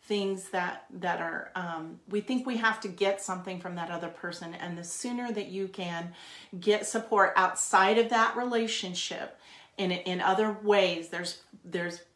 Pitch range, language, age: 170-195 Hz, English, 40-59